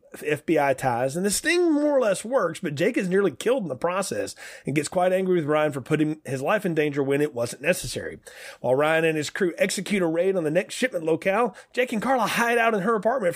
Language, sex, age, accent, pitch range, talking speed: English, male, 30-49, American, 145-195 Hz, 245 wpm